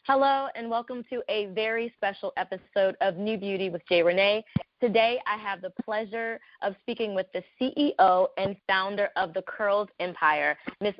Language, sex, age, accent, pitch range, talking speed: English, female, 20-39, American, 190-245 Hz, 170 wpm